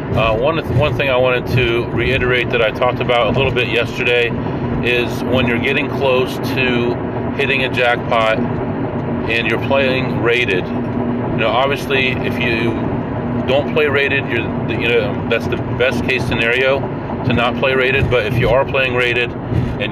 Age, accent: 40-59, American